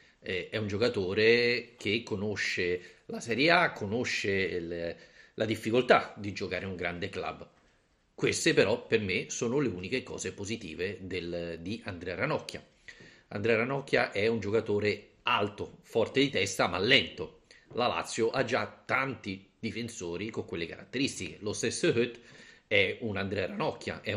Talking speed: 140 wpm